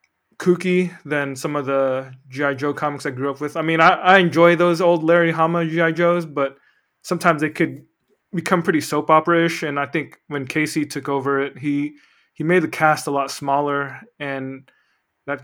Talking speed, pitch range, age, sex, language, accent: 190 wpm, 140-160 Hz, 20-39, male, English, American